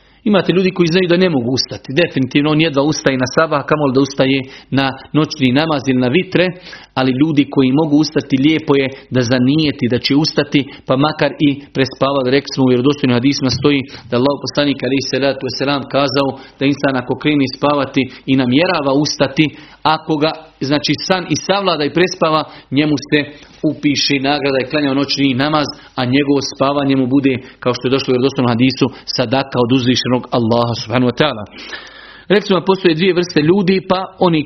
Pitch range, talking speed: 135-165 Hz, 170 wpm